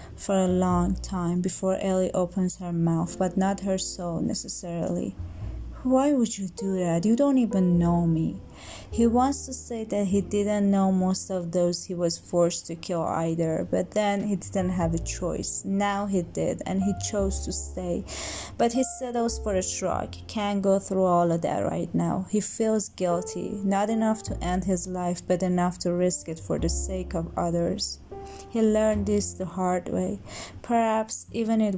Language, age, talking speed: Persian, 20-39, 185 wpm